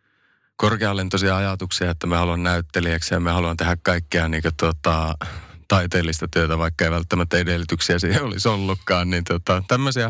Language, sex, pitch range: Finnish, male, 85-100 Hz